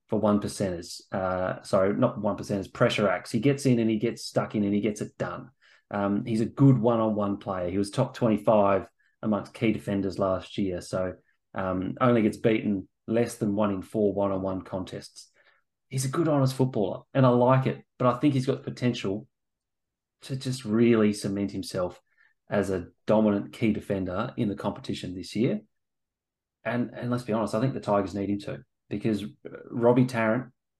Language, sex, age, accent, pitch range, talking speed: English, male, 30-49, Australian, 100-125 Hz, 185 wpm